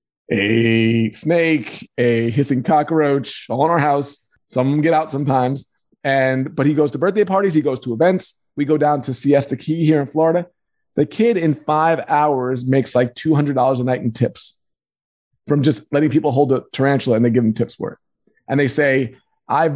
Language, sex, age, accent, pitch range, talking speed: English, male, 30-49, American, 135-165 Hz, 195 wpm